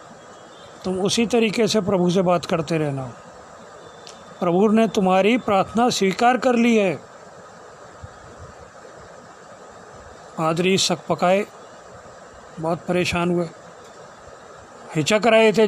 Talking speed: 100 wpm